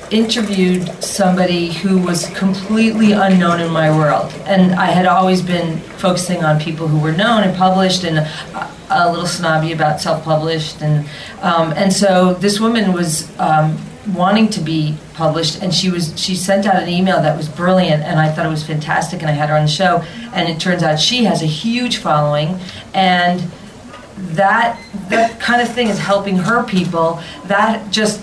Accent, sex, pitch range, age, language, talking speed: American, female, 165-200 Hz, 40-59, English, 185 wpm